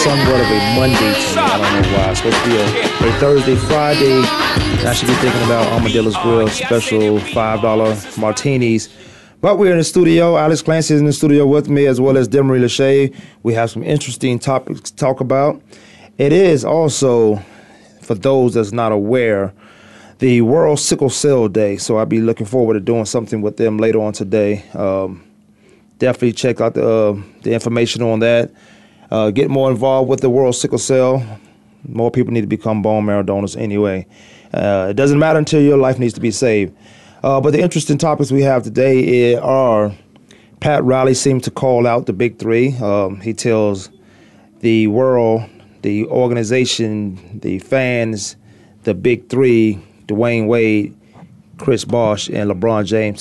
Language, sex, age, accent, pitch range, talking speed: English, male, 30-49, American, 110-130 Hz, 175 wpm